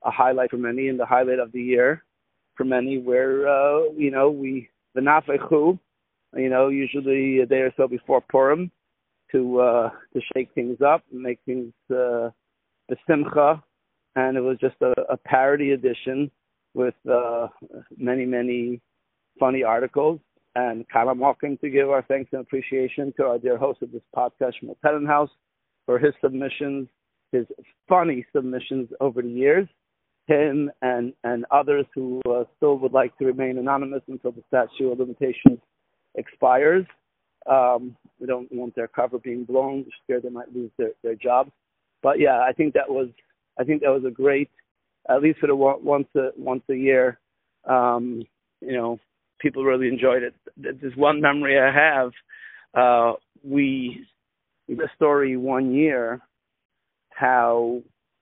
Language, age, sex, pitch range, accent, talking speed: English, 50-69, male, 125-140 Hz, American, 160 wpm